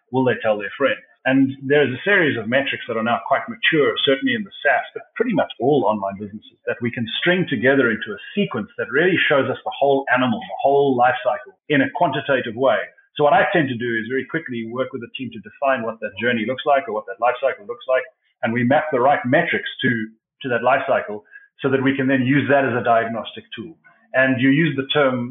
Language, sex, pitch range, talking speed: English, male, 115-145 Hz, 245 wpm